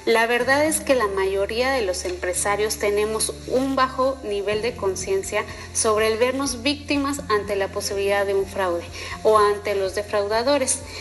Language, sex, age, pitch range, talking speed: Spanish, female, 30-49, 205-270 Hz, 160 wpm